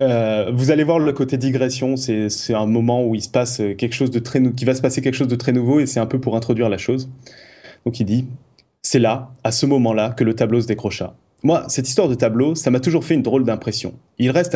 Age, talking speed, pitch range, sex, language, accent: 20-39, 265 wpm, 120-150 Hz, male, French, French